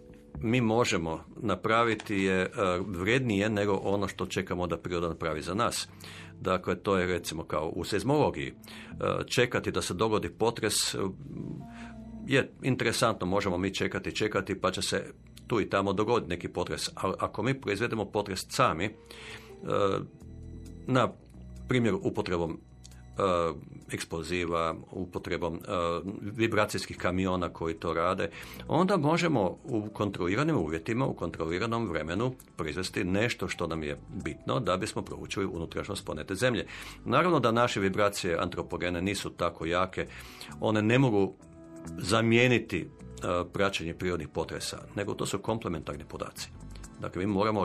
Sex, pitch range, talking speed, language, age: male, 85-110 Hz, 125 wpm, Croatian, 50-69